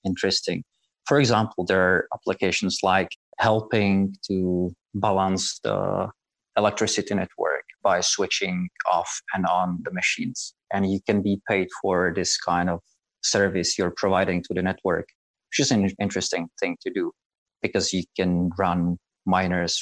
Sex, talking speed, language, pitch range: male, 140 wpm, English, 90-105 Hz